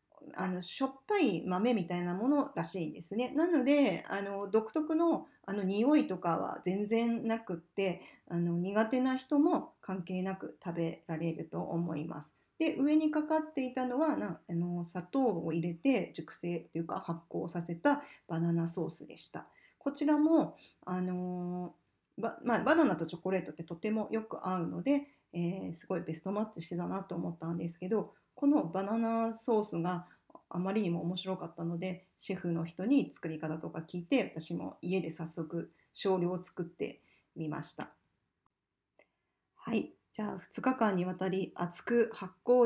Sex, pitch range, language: female, 175-230 Hz, Japanese